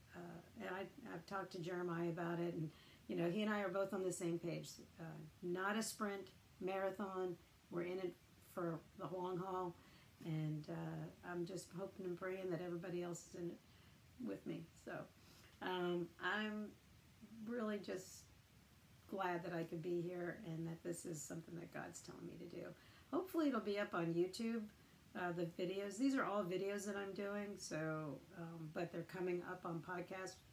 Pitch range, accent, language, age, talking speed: 170-200 Hz, American, English, 50-69, 185 wpm